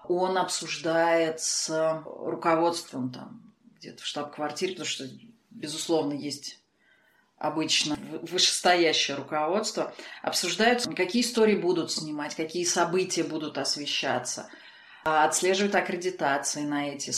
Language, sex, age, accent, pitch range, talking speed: Russian, female, 30-49, native, 150-185 Hz, 100 wpm